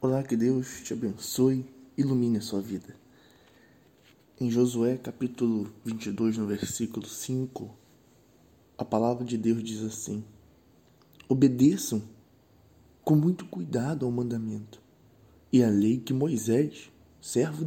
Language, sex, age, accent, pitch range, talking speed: Portuguese, male, 20-39, Brazilian, 105-130 Hz, 120 wpm